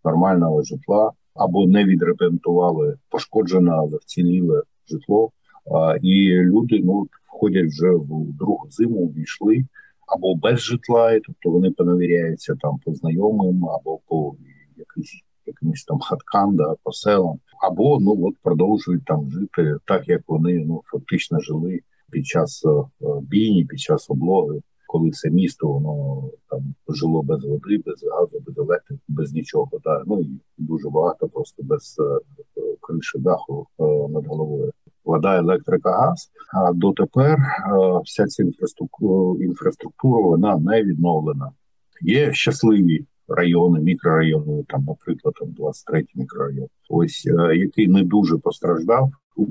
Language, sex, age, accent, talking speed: Ukrainian, male, 50-69, native, 130 wpm